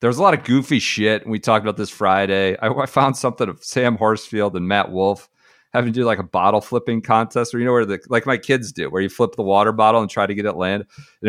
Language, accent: English, American